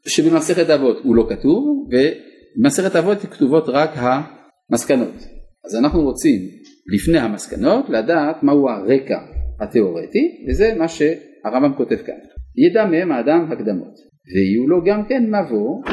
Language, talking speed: Hebrew, 125 wpm